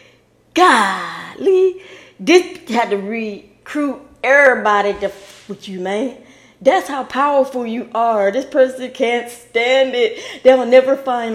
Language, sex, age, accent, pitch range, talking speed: English, female, 20-39, American, 215-290 Hz, 125 wpm